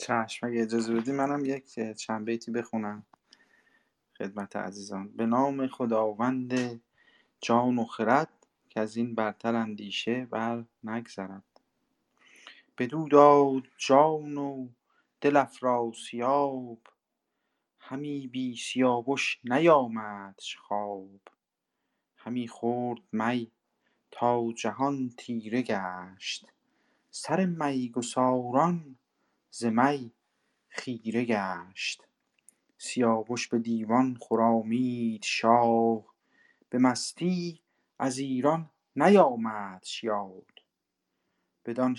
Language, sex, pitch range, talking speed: Persian, male, 115-135 Hz, 80 wpm